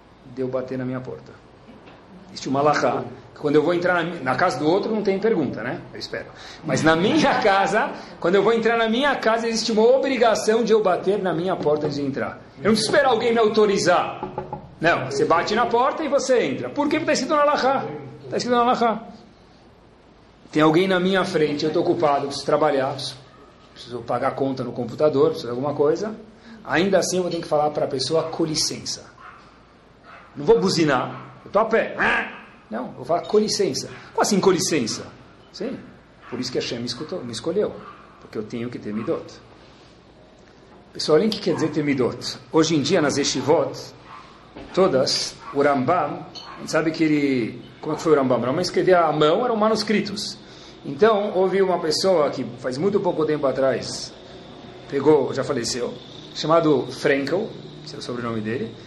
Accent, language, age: Brazilian, Portuguese, 40-59